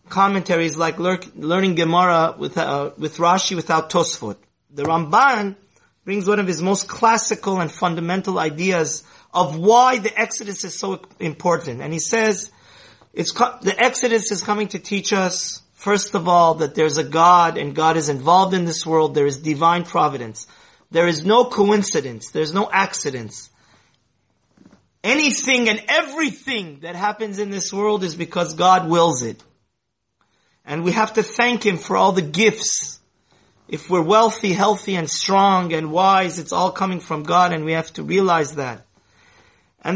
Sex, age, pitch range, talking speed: male, 30-49, 155-200 Hz, 160 wpm